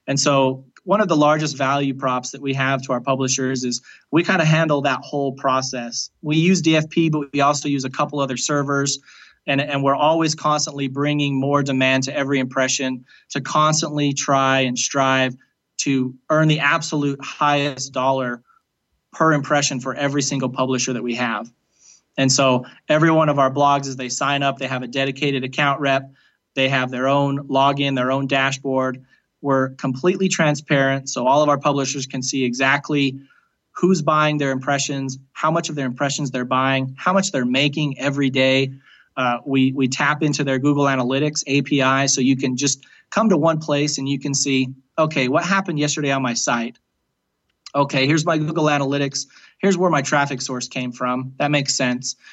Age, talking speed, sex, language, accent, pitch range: 30-49, 185 wpm, male, English, American, 130-145 Hz